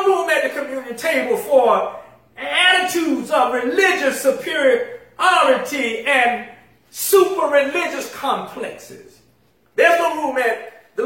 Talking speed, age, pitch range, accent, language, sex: 105 wpm, 40-59, 245-345 Hz, American, English, male